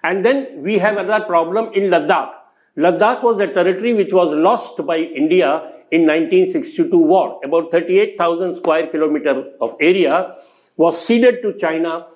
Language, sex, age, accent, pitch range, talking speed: Tamil, male, 50-69, native, 165-225 Hz, 150 wpm